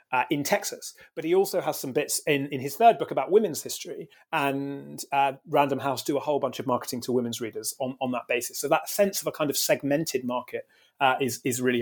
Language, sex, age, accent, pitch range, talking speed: English, male, 30-49, British, 125-155 Hz, 240 wpm